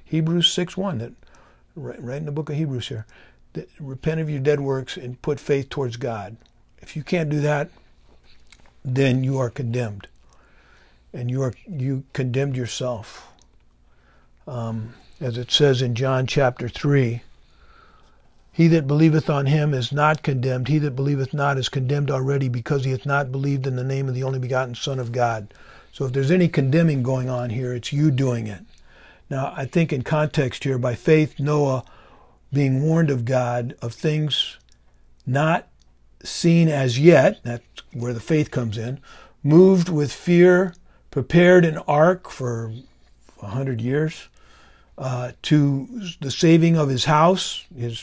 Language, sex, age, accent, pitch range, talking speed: English, male, 50-69, American, 120-150 Hz, 160 wpm